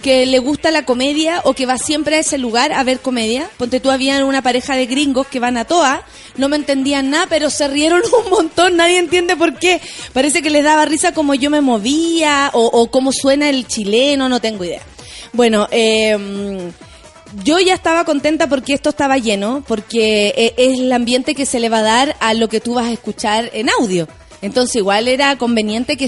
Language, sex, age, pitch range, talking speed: Spanish, female, 30-49, 230-300 Hz, 210 wpm